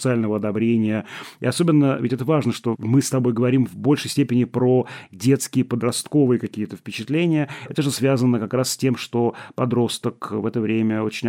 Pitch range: 110-135 Hz